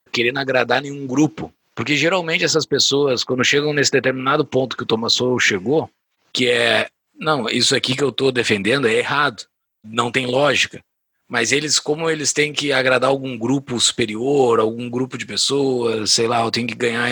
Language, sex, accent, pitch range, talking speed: Portuguese, male, Brazilian, 125-155 Hz, 180 wpm